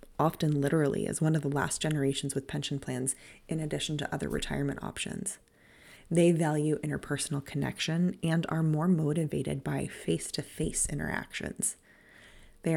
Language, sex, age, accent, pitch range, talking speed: English, female, 20-39, American, 145-175 Hz, 135 wpm